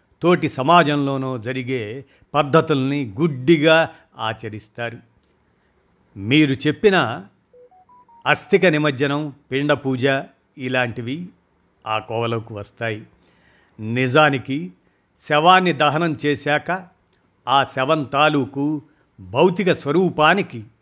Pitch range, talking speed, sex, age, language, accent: 125-160 Hz, 65 wpm, male, 50-69, Telugu, native